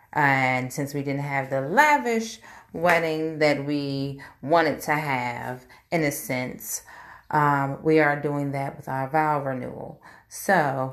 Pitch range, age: 125-150 Hz, 30-49